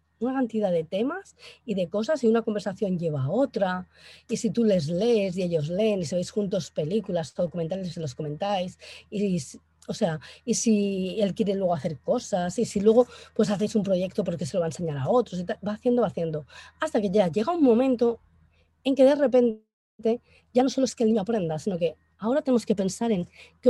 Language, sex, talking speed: Spanish, female, 220 wpm